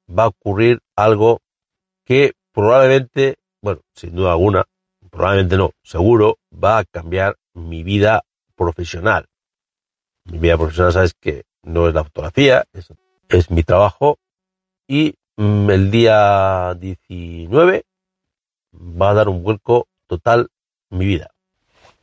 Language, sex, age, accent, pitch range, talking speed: Spanish, male, 50-69, Spanish, 90-125 Hz, 120 wpm